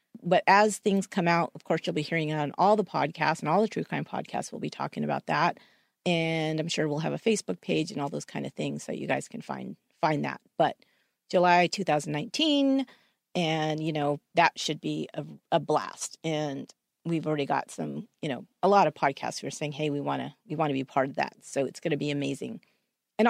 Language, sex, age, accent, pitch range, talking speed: English, female, 40-59, American, 160-210 Hz, 230 wpm